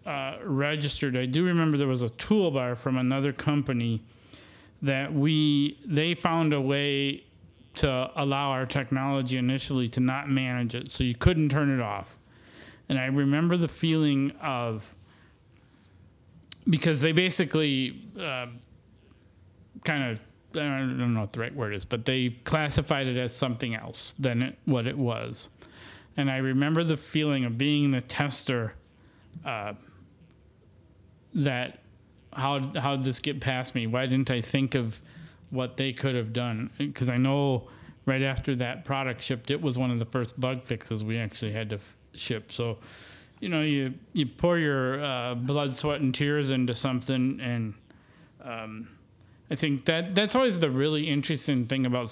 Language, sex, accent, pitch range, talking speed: English, male, American, 120-145 Hz, 160 wpm